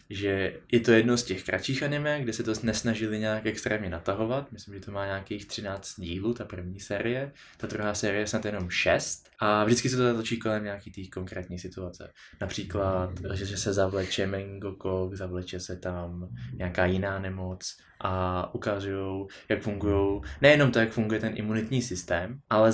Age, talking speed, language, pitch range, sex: 20-39, 175 wpm, Czech, 95-115 Hz, male